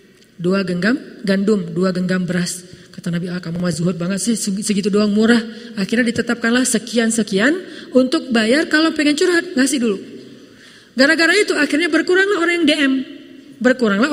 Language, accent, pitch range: Indonesian, native, 205-265 Hz